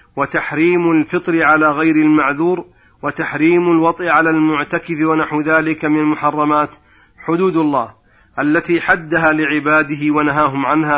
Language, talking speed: Arabic, 110 wpm